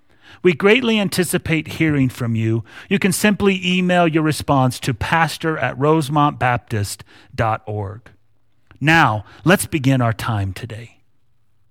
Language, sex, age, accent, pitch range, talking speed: English, male, 40-59, American, 120-165 Hz, 115 wpm